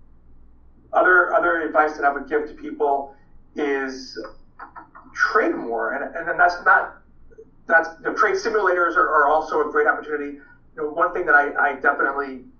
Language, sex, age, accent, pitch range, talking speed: English, male, 40-59, American, 135-160 Hz, 165 wpm